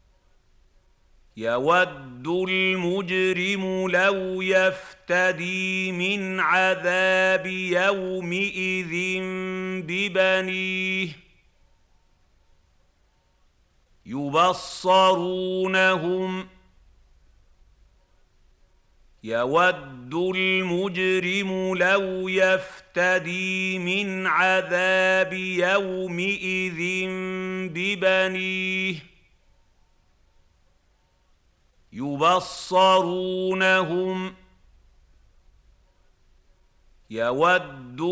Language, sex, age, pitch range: Arabic, male, 50-69, 120-185 Hz